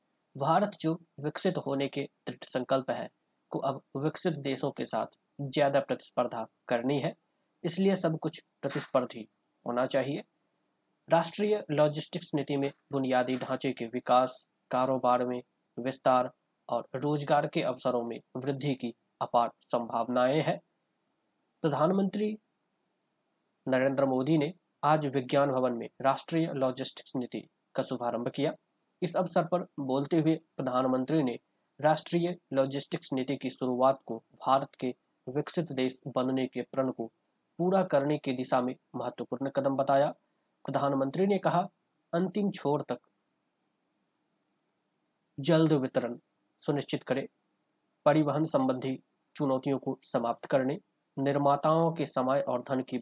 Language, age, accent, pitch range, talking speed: Hindi, 20-39, native, 130-155 Hz, 120 wpm